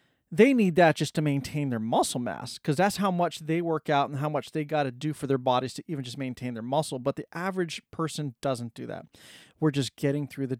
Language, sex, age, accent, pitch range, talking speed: English, male, 40-59, American, 130-170 Hz, 250 wpm